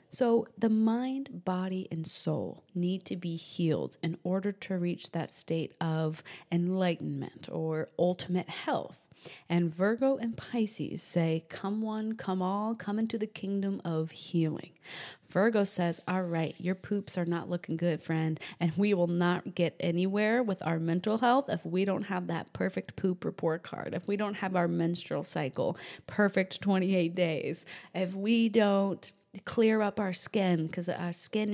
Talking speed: 165 wpm